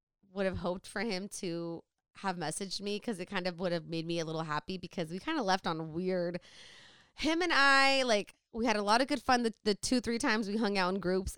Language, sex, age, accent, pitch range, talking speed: English, female, 20-39, American, 180-245 Hz, 255 wpm